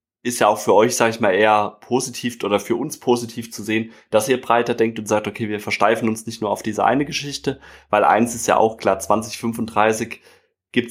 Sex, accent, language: male, German, German